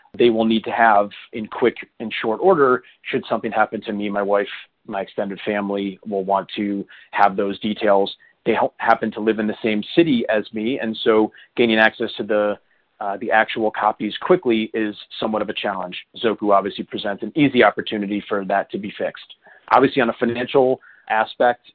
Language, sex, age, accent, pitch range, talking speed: English, male, 30-49, American, 105-115 Hz, 190 wpm